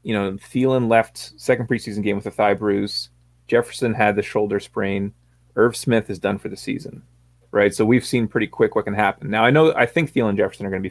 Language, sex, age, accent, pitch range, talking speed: English, male, 30-49, American, 90-110 Hz, 240 wpm